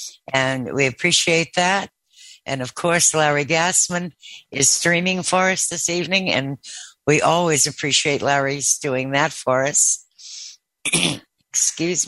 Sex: female